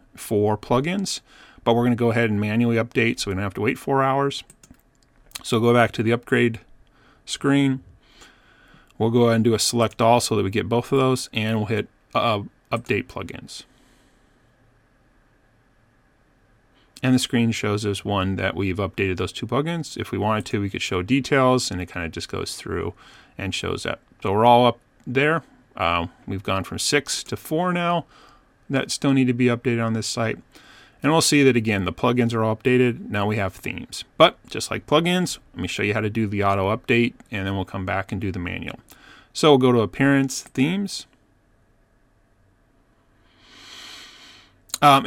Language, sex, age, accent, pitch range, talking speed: English, male, 30-49, American, 105-130 Hz, 190 wpm